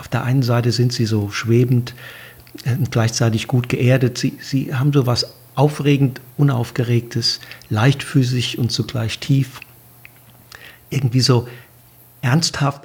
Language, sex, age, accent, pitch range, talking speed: German, male, 50-69, German, 120-140 Hz, 115 wpm